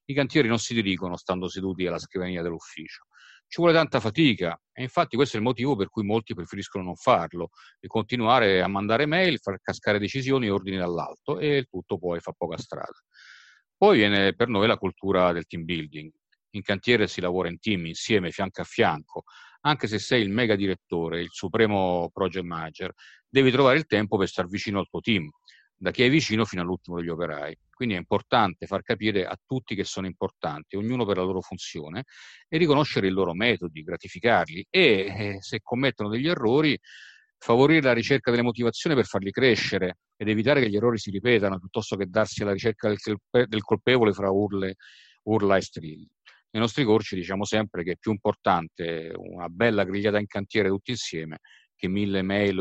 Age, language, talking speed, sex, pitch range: 40-59, Italian, 185 wpm, male, 90-115 Hz